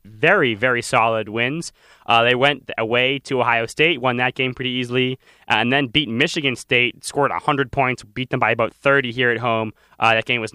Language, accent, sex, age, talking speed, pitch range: English, American, male, 20-39, 205 wpm, 115-140 Hz